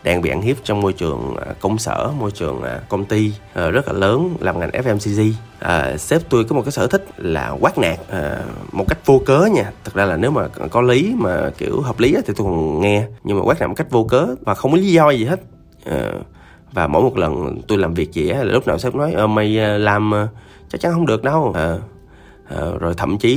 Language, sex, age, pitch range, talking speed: Vietnamese, male, 20-39, 90-120 Hz, 245 wpm